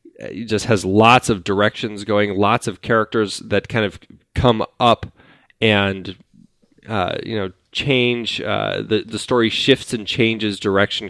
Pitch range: 95-120 Hz